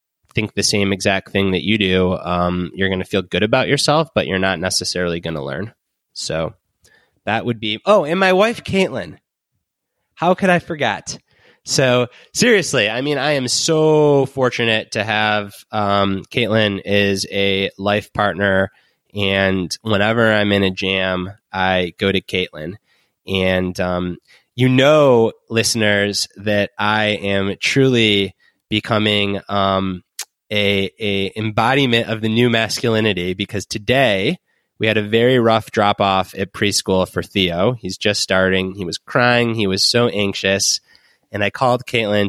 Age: 20-39